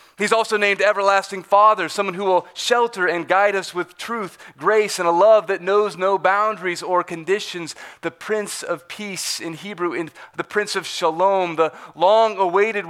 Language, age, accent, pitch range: English, 30-49, American, 165-200 Hz